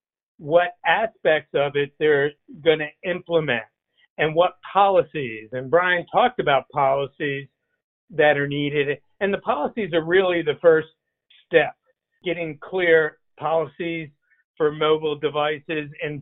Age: 60-79